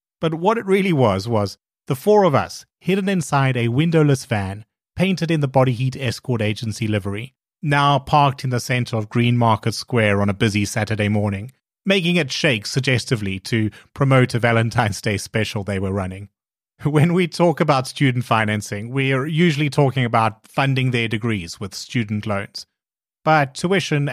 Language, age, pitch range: English, 30-49, 110-150 Hz